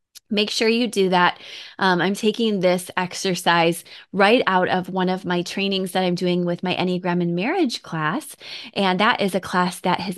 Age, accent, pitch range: 20-39, American, 175-225 Hz